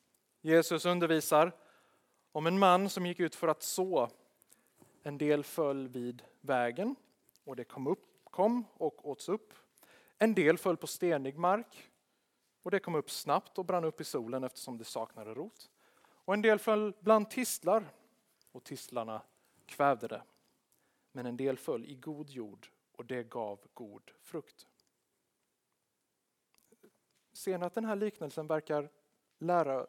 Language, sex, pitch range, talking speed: Swedish, male, 135-180 Hz, 145 wpm